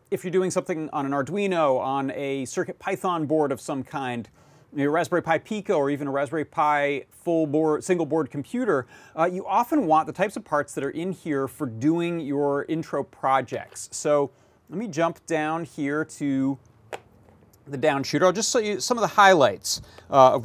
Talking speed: 190 wpm